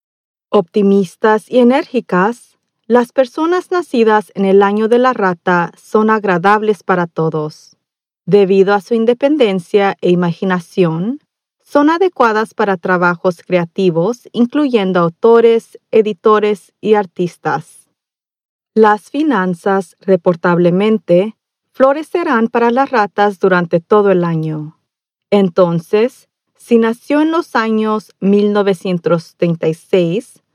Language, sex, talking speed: Spanish, female, 100 wpm